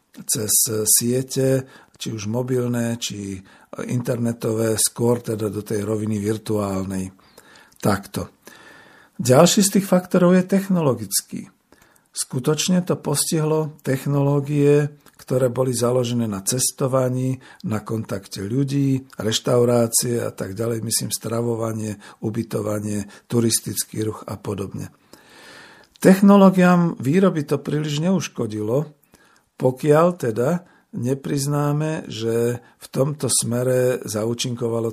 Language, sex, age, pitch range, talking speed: Slovak, male, 50-69, 110-145 Hz, 95 wpm